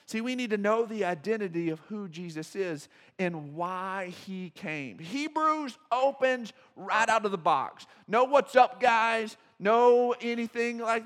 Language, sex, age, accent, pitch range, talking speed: English, male, 40-59, American, 175-230 Hz, 155 wpm